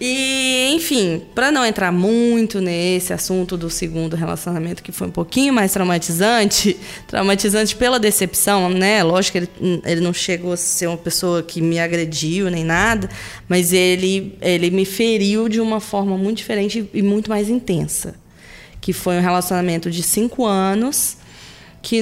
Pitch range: 180-225 Hz